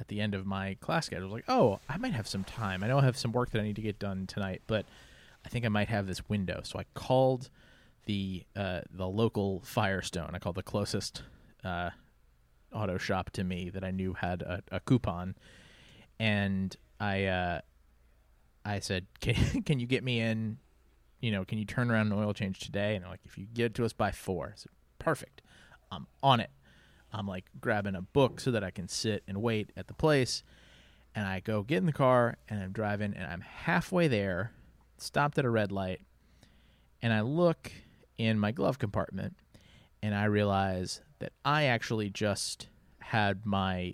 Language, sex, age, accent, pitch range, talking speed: English, male, 30-49, American, 95-120 Hz, 200 wpm